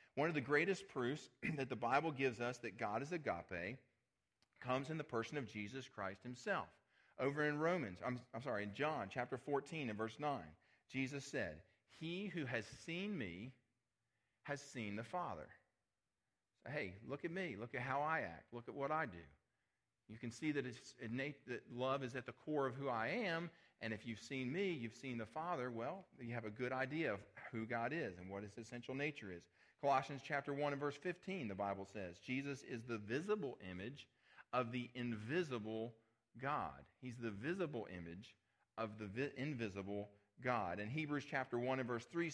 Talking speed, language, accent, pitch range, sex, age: 185 wpm, English, American, 115-150 Hz, male, 40-59